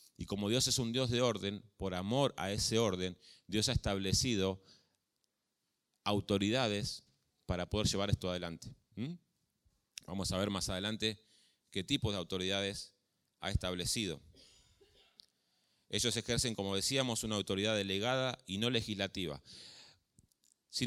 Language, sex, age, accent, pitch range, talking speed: Spanish, male, 30-49, Argentinian, 100-130 Hz, 125 wpm